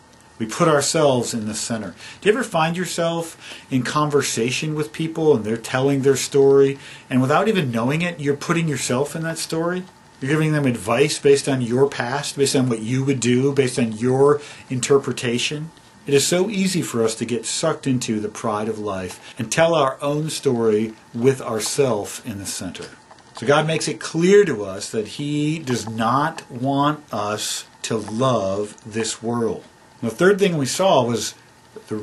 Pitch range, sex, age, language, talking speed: 115-150 Hz, male, 50-69, English, 185 wpm